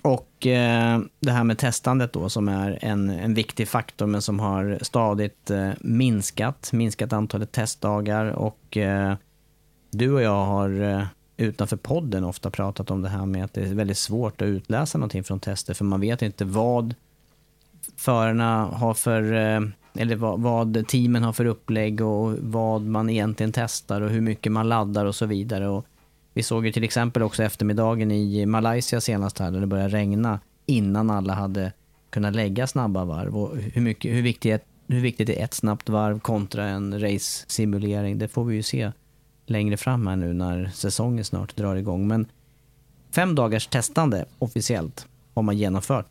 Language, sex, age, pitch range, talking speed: Swedish, male, 30-49, 100-120 Hz, 175 wpm